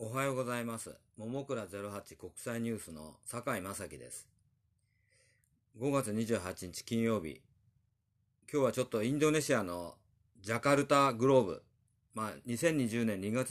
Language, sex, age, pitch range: Japanese, male, 40-59, 100-130 Hz